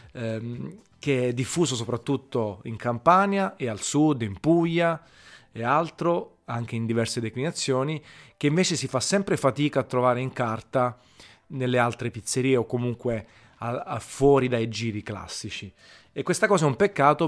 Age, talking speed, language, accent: 30-49, 145 wpm, Italian, native